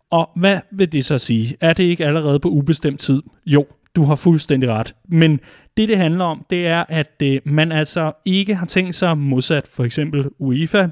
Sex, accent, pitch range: male, native, 140-170 Hz